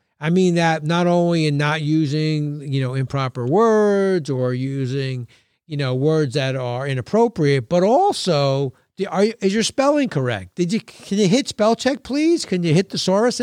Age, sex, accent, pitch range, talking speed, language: 50-69, male, American, 140-200 Hz, 185 wpm, English